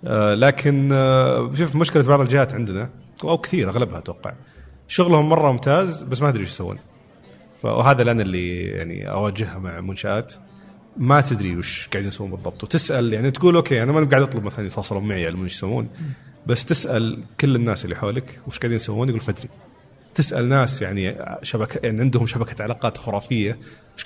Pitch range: 100-135 Hz